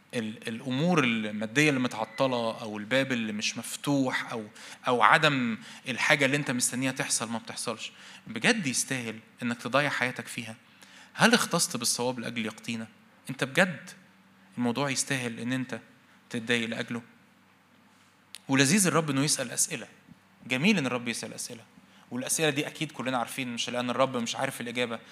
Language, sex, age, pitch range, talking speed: Arabic, male, 20-39, 120-175 Hz, 140 wpm